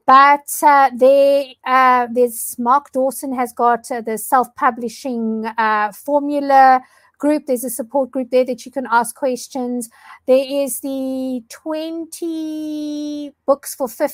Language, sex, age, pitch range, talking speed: English, female, 50-69, 250-295 Hz, 130 wpm